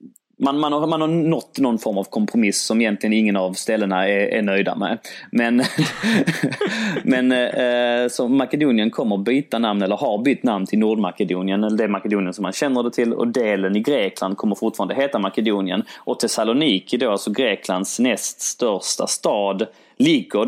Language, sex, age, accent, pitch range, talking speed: English, male, 20-39, Swedish, 100-110 Hz, 155 wpm